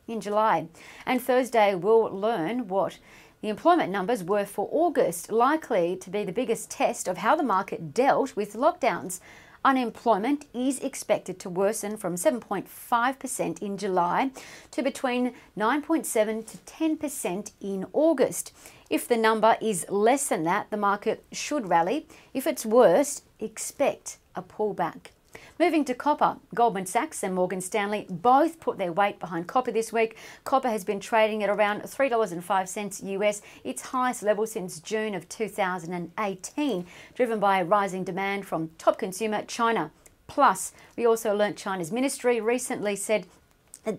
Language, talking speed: English, 145 wpm